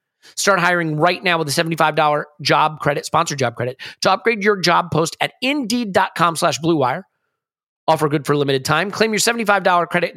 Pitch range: 135-170 Hz